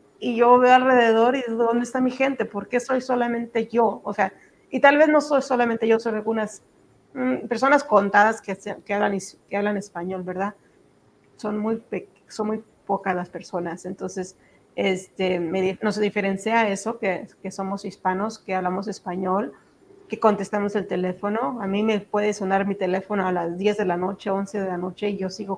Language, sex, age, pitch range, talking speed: Spanish, female, 30-49, 190-225 Hz, 190 wpm